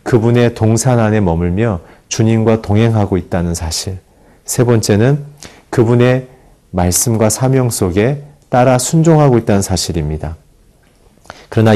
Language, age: Korean, 40-59